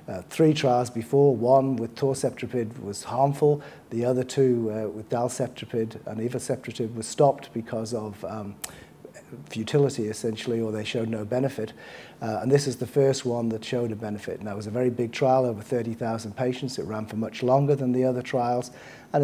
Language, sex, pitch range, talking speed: English, male, 110-130 Hz, 185 wpm